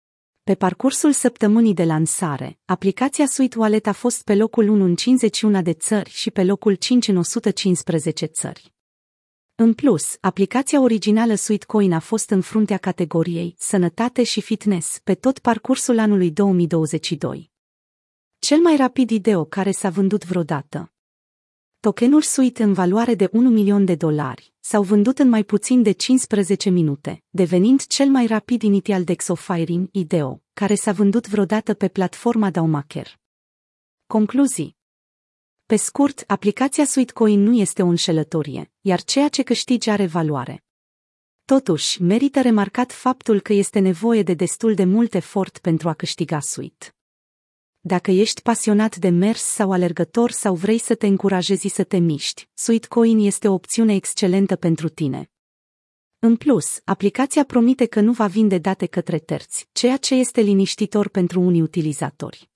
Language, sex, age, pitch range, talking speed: Romanian, female, 30-49, 180-230 Hz, 150 wpm